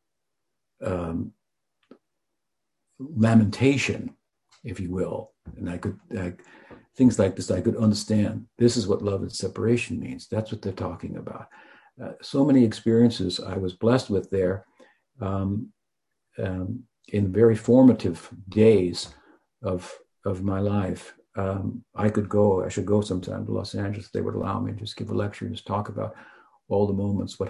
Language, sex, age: English, male, 60-79